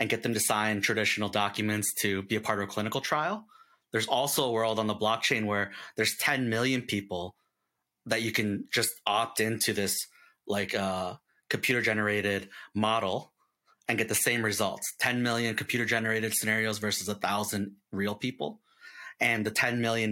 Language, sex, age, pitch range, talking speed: English, male, 30-49, 100-115 Hz, 175 wpm